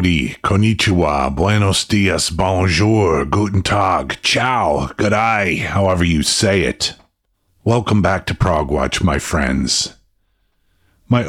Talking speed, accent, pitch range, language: 110 wpm, American, 85-100 Hz, English